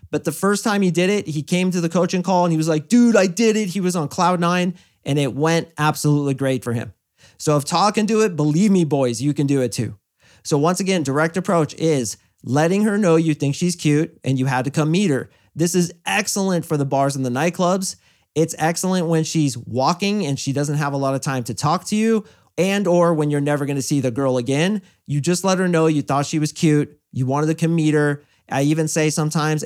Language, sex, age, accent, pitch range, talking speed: English, male, 30-49, American, 135-175 Hz, 250 wpm